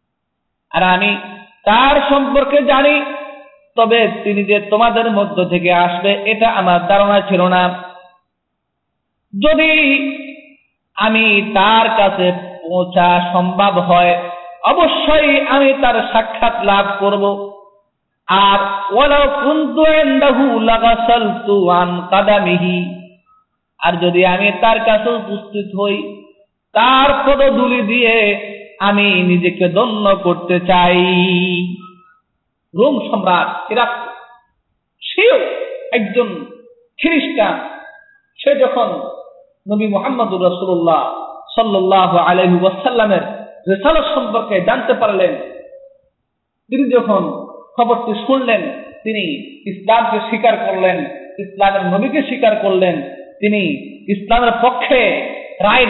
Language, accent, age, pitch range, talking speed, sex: Bengali, native, 50-69, 185-260 Hz, 85 wpm, male